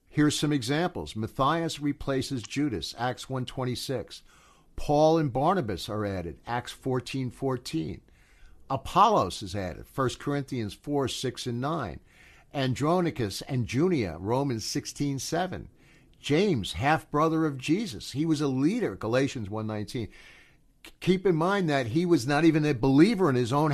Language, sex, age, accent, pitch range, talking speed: English, male, 60-79, American, 120-155 Hz, 135 wpm